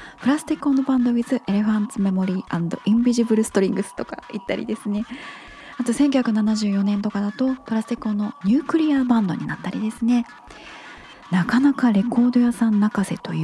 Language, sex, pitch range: Japanese, female, 195-250 Hz